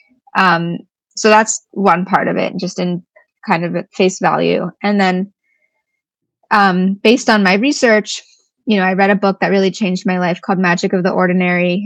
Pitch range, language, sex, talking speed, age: 180-210 Hz, English, female, 180 wpm, 20-39